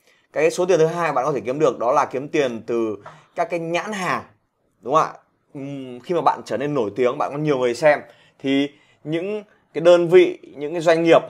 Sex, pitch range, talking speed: male, 120-170 Hz, 230 wpm